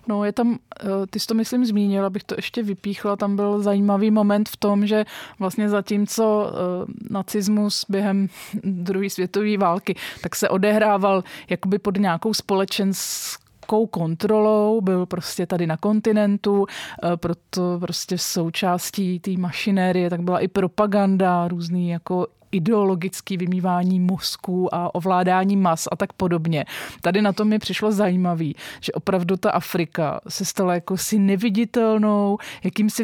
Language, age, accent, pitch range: Czech, 30-49, native, 180-205 Hz